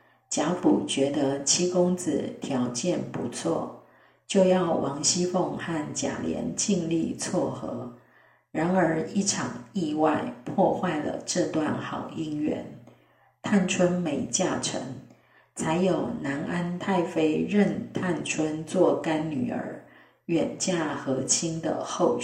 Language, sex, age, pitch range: Chinese, female, 40-59, 150-185 Hz